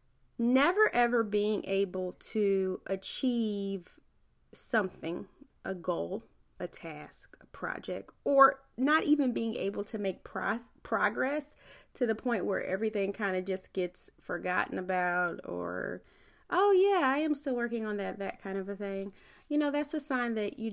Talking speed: 155 wpm